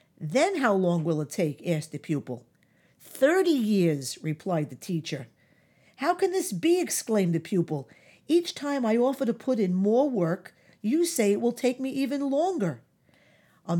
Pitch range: 165-215 Hz